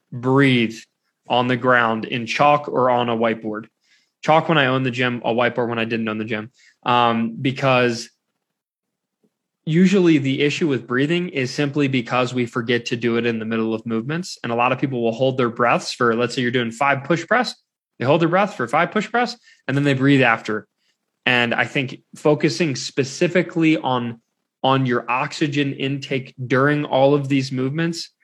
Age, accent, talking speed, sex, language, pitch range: 20-39, American, 190 wpm, male, English, 120-150 Hz